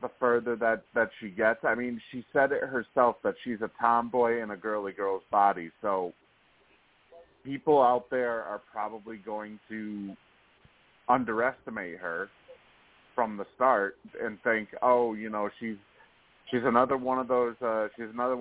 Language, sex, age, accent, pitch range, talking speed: English, male, 30-49, American, 100-120 Hz, 155 wpm